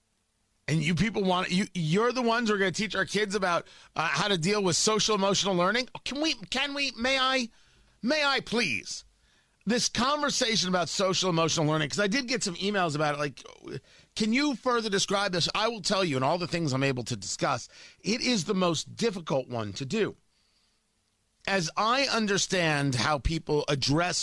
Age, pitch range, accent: 40-59, 145-210 Hz, American